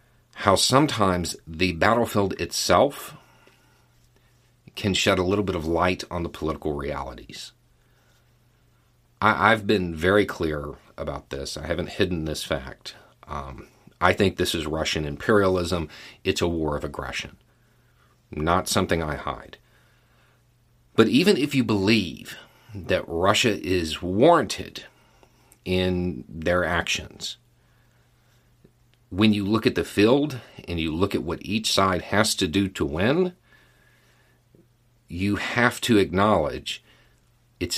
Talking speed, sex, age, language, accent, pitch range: 125 wpm, male, 40-59, English, American, 85-120 Hz